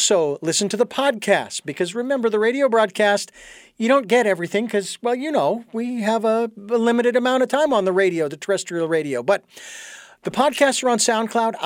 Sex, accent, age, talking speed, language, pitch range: male, American, 50-69, 195 wpm, English, 175-225 Hz